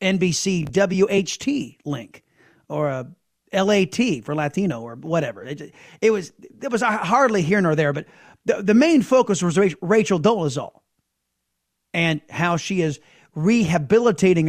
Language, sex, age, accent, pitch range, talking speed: English, male, 30-49, American, 165-225 Hz, 135 wpm